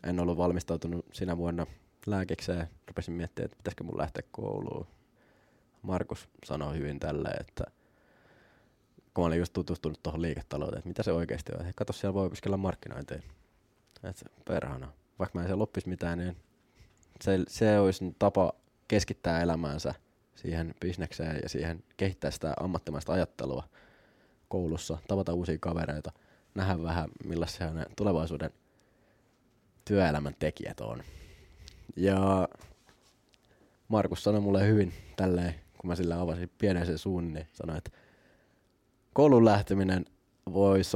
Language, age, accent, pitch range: Finnish, 20-39, native, 80-100 Hz